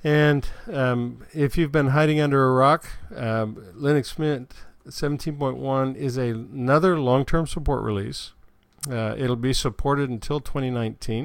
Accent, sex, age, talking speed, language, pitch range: American, male, 50-69, 135 wpm, English, 110-145 Hz